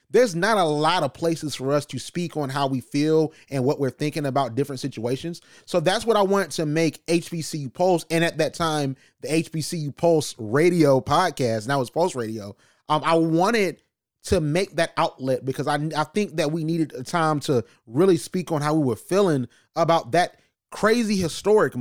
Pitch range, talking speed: 140-175 Hz, 195 wpm